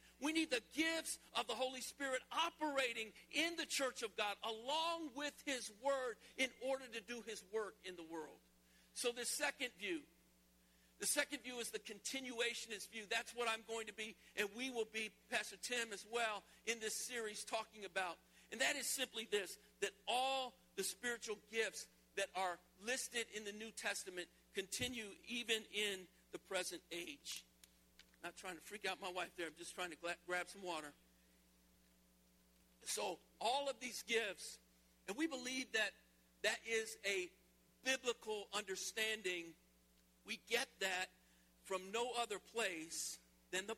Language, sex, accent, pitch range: English, male, American, 160-235 Hz